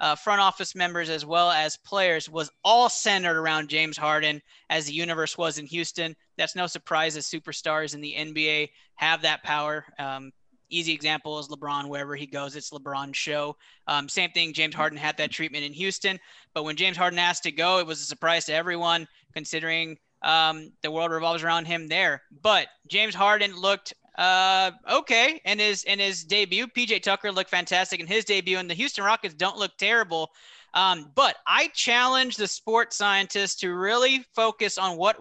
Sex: male